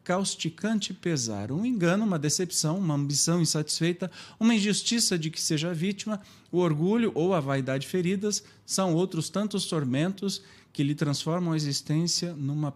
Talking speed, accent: 145 wpm, Brazilian